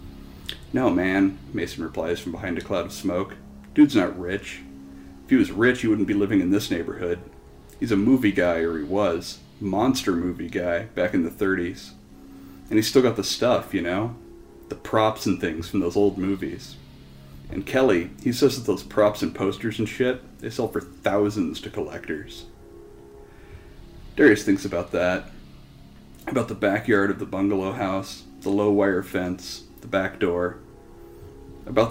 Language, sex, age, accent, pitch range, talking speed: English, male, 40-59, American, 70-100 Hz, 165 wpm